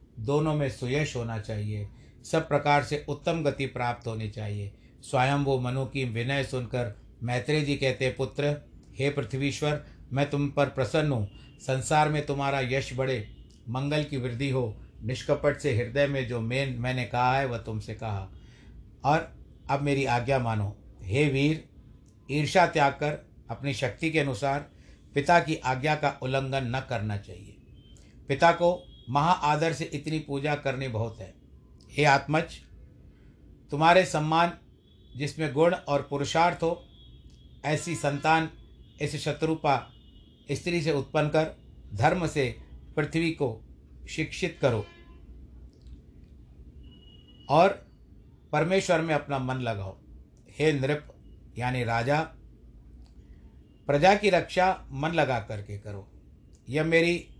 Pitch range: 110-150 Hz